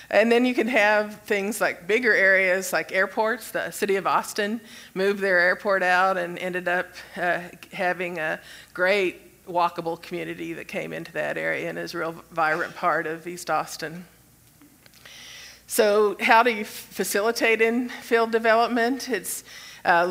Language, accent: English, American